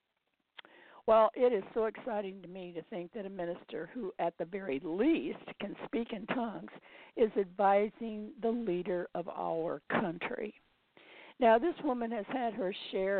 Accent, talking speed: American, 160 wpm